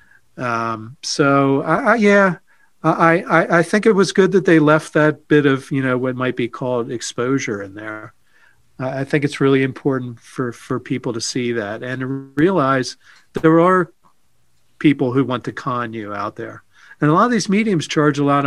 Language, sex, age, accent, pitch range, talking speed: English, male, 40-59, American, 120-150 Hz, 195 wpm